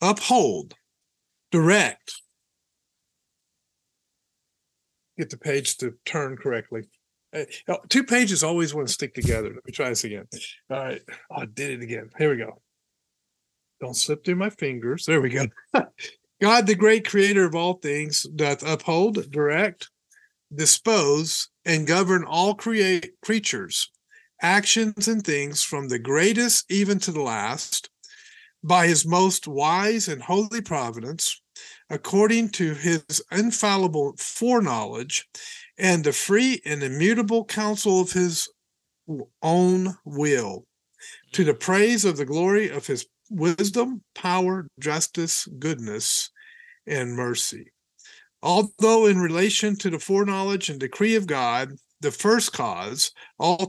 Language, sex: English, male